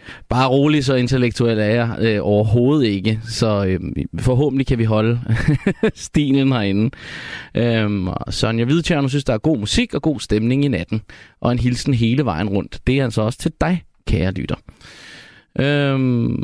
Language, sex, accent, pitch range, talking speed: Danish, male, native, 110-145 Hz, 170 wpm